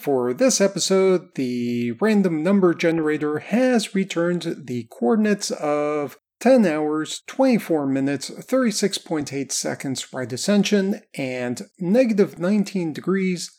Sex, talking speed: male, 105 wpm